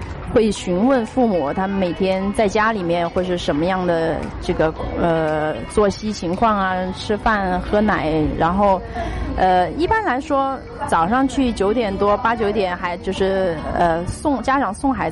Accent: native